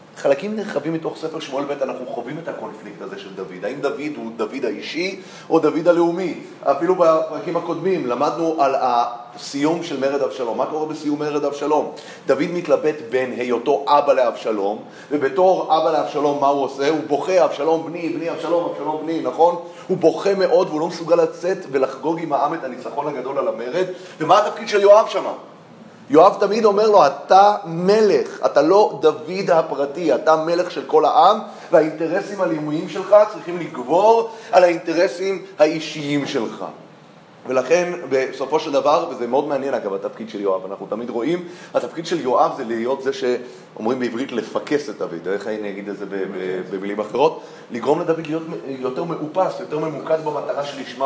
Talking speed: 165 wpm